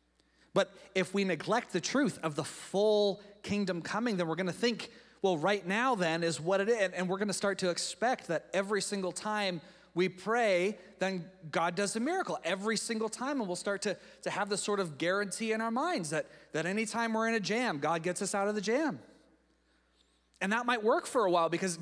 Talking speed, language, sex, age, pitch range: 220 wpm, English, male, 30-49, 150-205 Hz